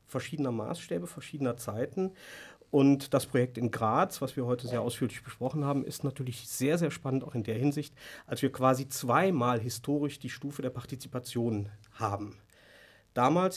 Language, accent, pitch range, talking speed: German, German, 120-155 Hz, 160 wpm